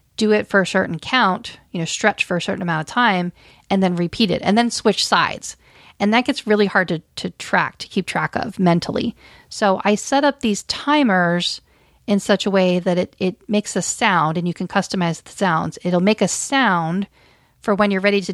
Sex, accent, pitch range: female, American, 175-215 Hz